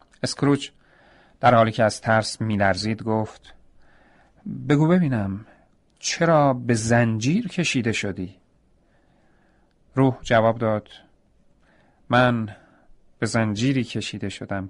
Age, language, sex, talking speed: 40-59, Persian, male, 100 wpm